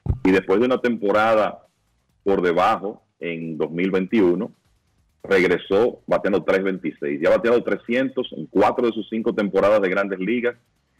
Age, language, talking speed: 40-59, Spanish, 135 wpm